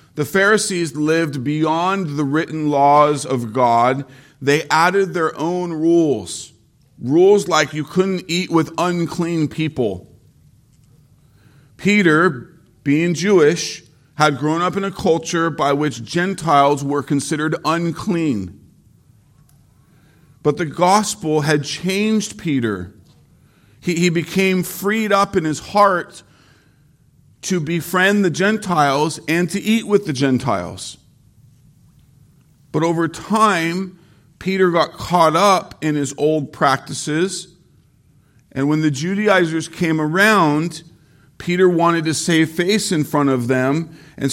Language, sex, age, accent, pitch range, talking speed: English, male, 50-69, American, 140-175 Hz, 120 wpm